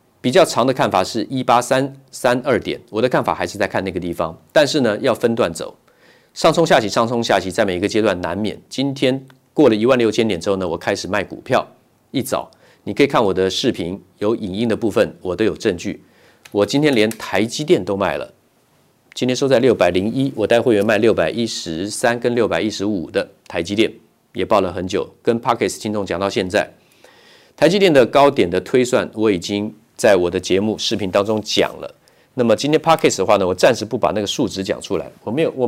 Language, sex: Chinese, male